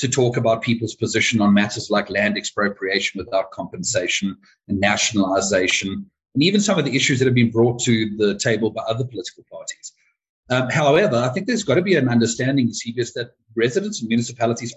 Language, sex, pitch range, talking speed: English, male, 110-135 Hz, 185 wpm